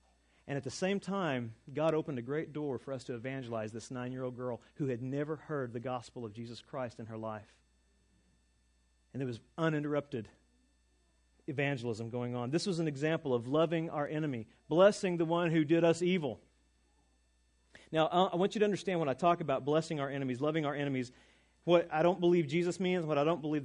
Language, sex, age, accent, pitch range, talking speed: English, male, 40-59, American, 120-175 Hz, 195 wpm